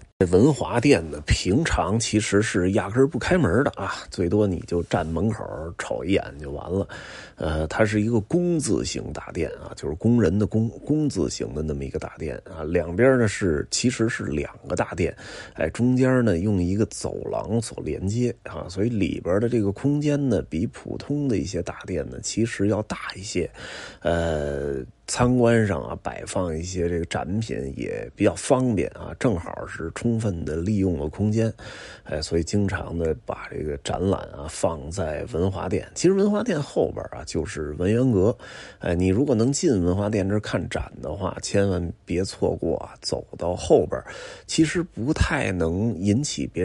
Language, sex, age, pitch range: Chinese, male, 20-39, 85-120 Hz